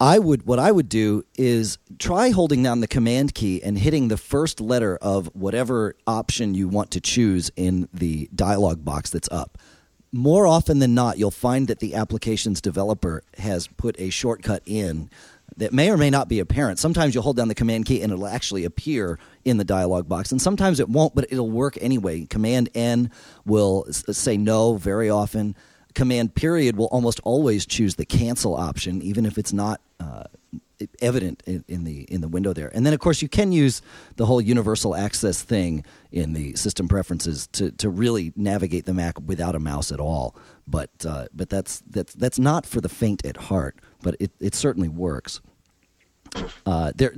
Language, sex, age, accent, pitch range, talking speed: English, male, 40-59, American, 90-125 Hz, 190 wpm